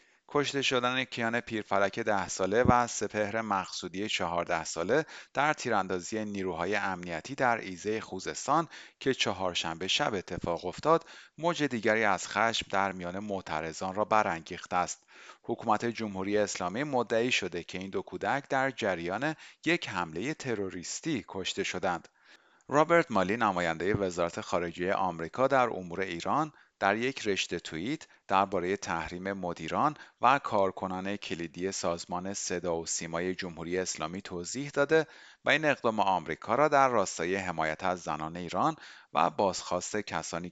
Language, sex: Persian, male